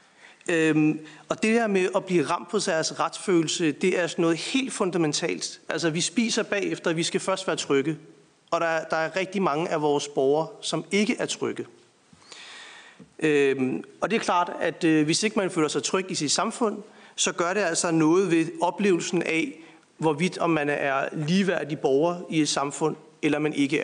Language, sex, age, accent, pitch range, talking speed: Danish, male, 40-59, native, 155-200 Hz, 190 wpm